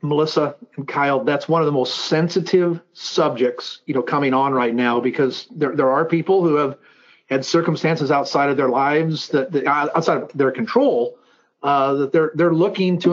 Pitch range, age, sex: 150-190 Hz, 40-59, male